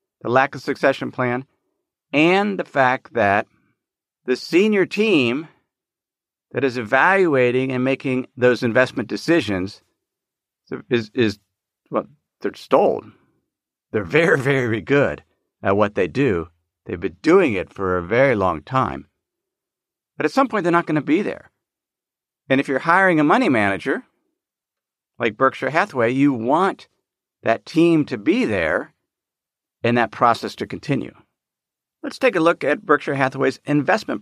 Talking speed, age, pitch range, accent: 145 wpm, 50-69, 110-150 Hz, American